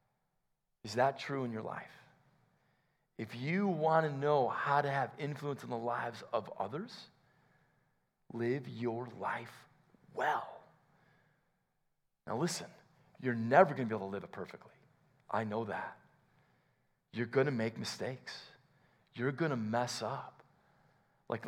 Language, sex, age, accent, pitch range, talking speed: English, male, 40-59, American, 120-155 Hz, 130 wpm